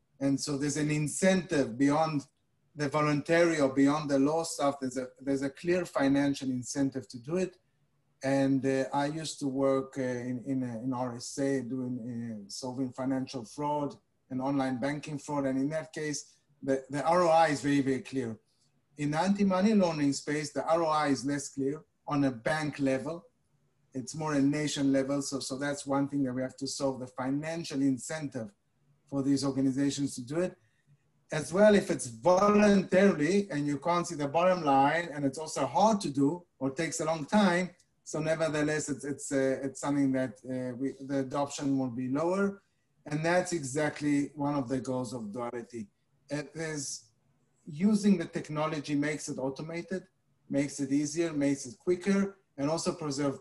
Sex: male